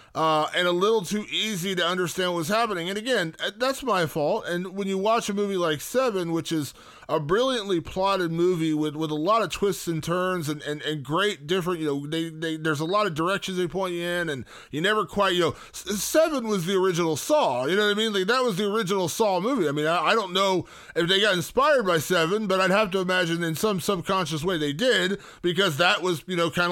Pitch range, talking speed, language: 165-215 Hz, 240 wpm, English